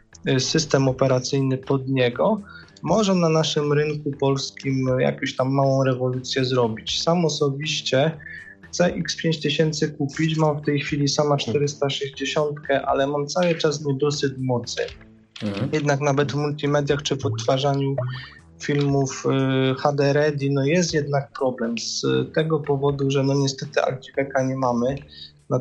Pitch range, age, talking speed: 130-145 Hz, 20-39, 125 wpm